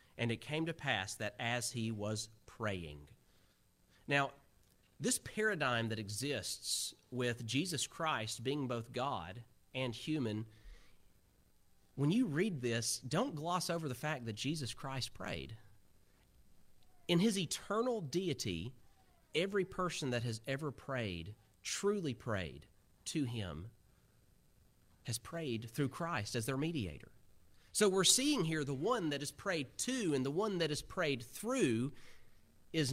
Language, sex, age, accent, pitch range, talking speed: English, male, 40-59, American, 110-160 Hz, 135 wpm